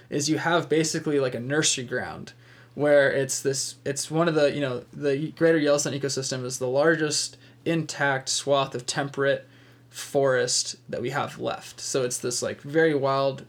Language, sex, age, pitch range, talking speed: English, male, 20-39, 130-145 Hz, 175 wpm